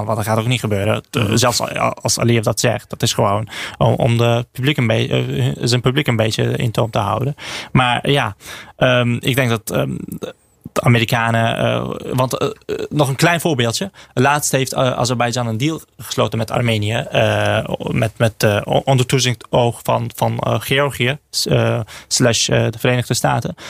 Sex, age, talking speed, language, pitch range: male, 20-39, 180 wpm, Dutch, 115-130 Hz